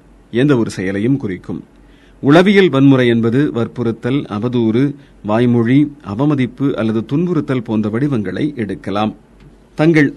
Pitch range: 110-145 Hz